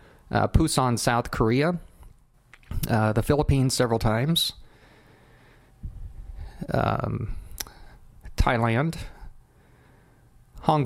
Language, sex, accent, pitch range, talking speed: English, male, American, 100-120 Hz, 65 wpm